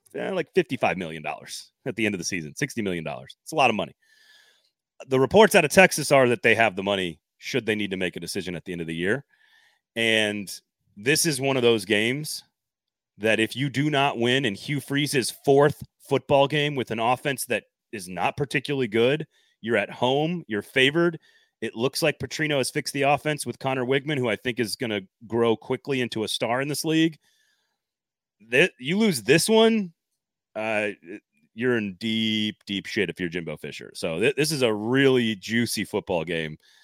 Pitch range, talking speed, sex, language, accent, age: 110-150 Hz, 200 wpm, male, English, American, 30-49